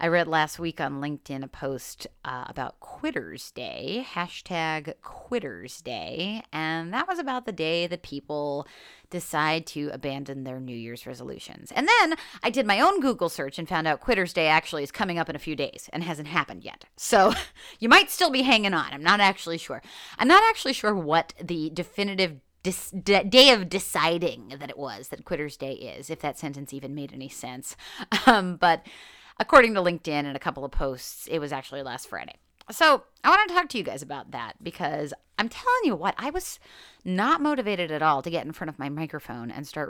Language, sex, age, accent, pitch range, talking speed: English, female, 30-49, American, 150-235 Hz, 205 wpm